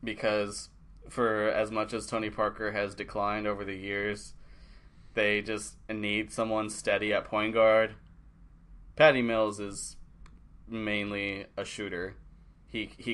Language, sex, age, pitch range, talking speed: English, male, 20-39, 95-110 Hz, 130 wpm